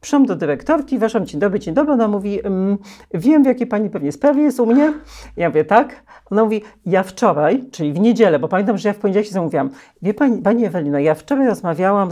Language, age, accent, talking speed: Polish, 40-59, native, 220 wpm